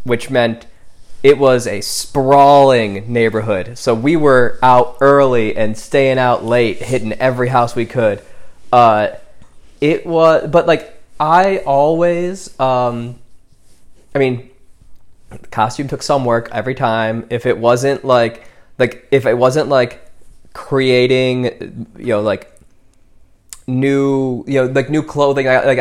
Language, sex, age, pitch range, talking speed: English, male, 20-39, 115-130 Hz, 135 wpm